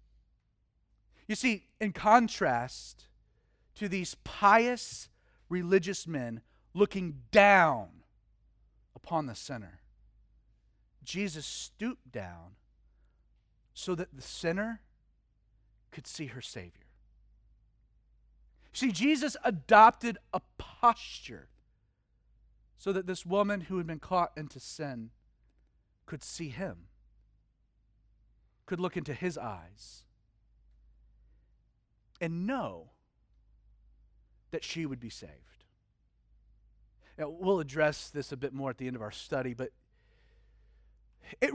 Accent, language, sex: American, English, male